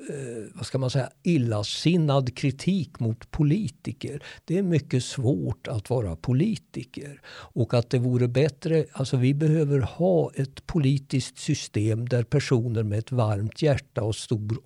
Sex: male